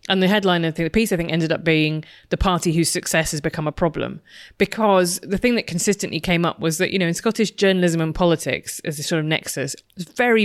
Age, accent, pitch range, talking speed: 30-49, British, 160-200 Hz, 240 wpm